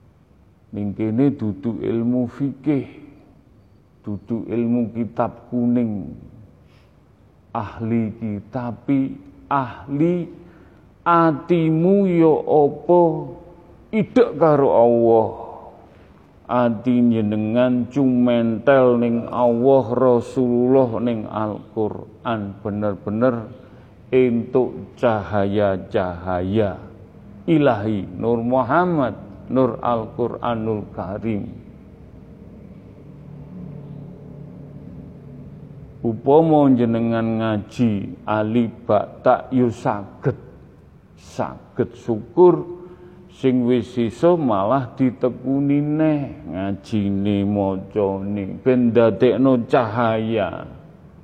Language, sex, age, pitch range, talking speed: Indonesian, male, 40-59, 110-145 Hz, 65 wpm